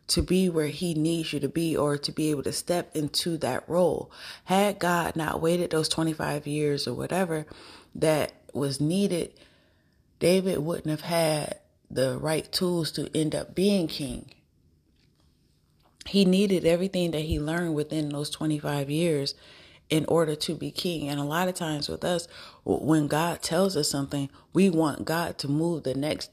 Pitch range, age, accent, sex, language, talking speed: 145-170 Hz, 30-49, American, female, English, 170 wpm